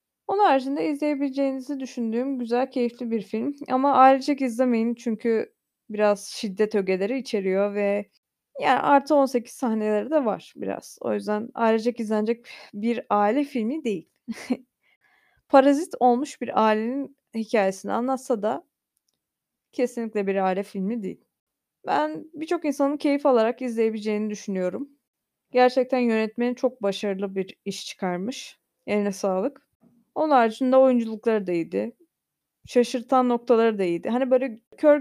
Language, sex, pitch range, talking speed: Turkish, female, 215-270 Hz, 125 wpm